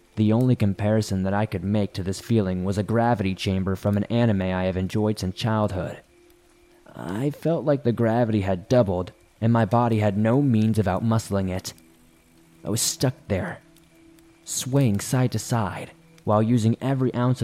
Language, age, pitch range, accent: English, 20-39, 100-120 Hz, American